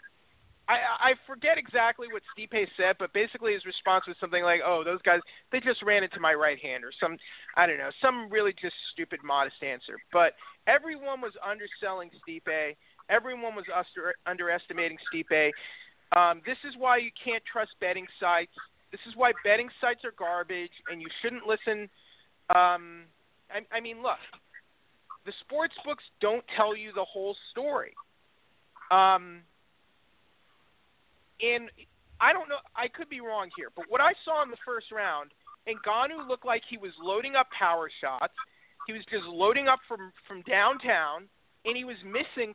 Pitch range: 190-255 Hz